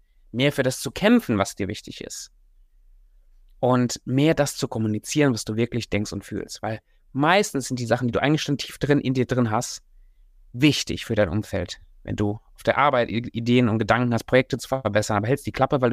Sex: male